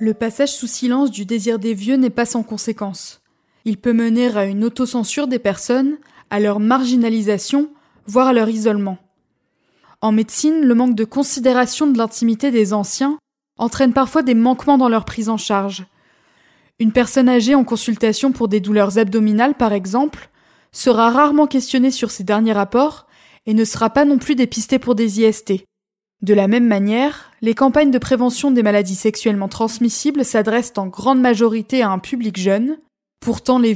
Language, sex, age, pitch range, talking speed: French, female, 20-39, 215-260 Hz, 170 wpm